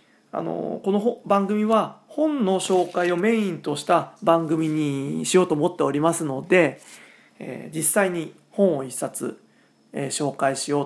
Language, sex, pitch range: Japanese, male, 150-225 Hz